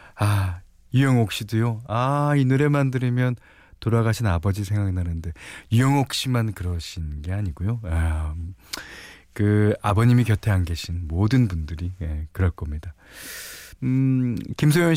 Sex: male